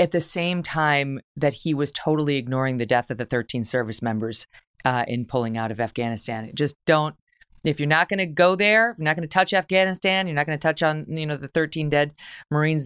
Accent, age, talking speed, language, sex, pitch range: American, 30-49, 235 wpm, English, female, 130-175 Hz